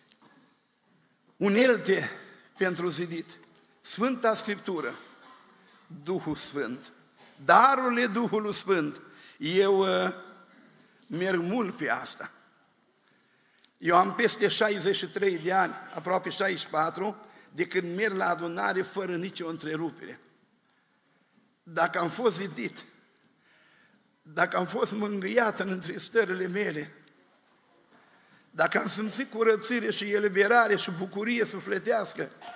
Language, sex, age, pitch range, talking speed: Romanian, male, 50-69, 185-225 Hz, 95 wpm